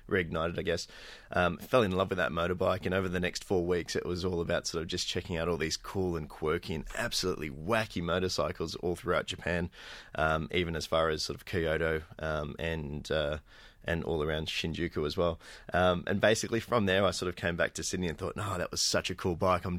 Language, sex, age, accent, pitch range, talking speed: English, male, 20-39, Australian, 80-90 Hz, 235 wpm